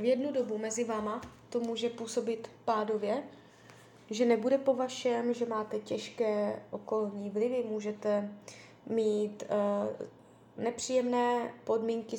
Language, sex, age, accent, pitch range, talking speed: Czech, female, 20-39, native, 210-240 Hz, 110 wpm